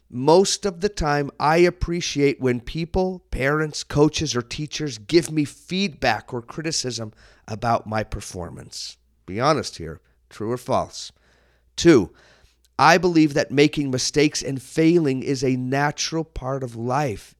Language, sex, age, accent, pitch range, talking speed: English, male, 40-59, American, 125-165 Hz, 140 wpm